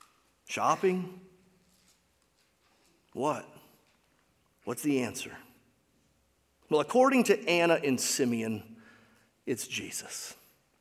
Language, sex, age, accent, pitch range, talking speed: English, male, 40-59, American, 130-175 Hz, 70 wpm